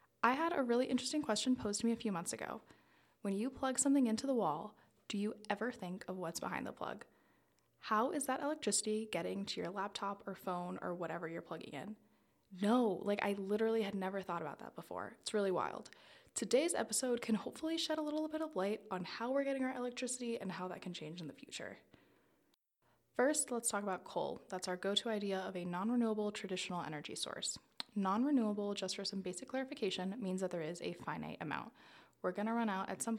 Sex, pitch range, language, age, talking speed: female, 180-235 Hz, English, 20-39, 210 wpm